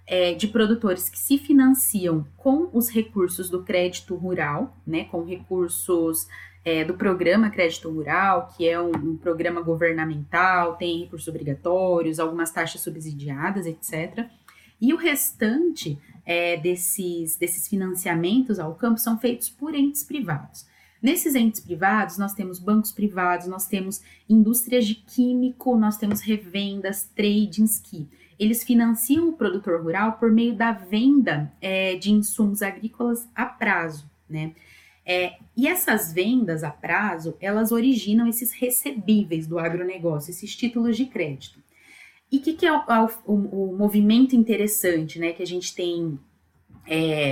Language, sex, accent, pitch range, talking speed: Portuguese, female, Brazilian, 170-225 Hz, 135 wpm